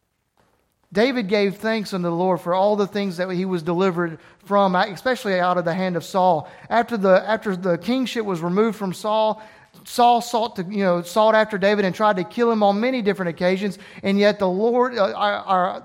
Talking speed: 205 wpm